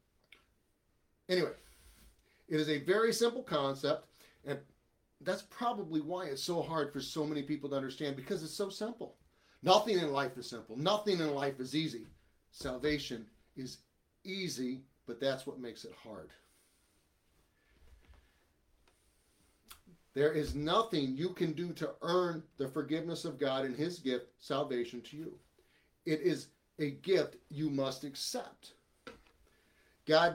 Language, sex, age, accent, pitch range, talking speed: English, male, 40-59, American, 130-180 Hz, 135 wpm